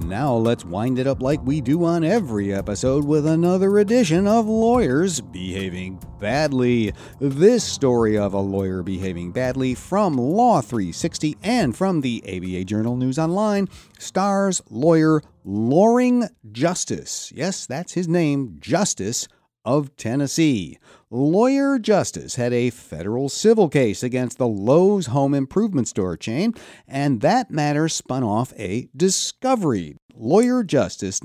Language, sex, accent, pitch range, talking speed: English, male, American, 115-185 Hz, 130 wpm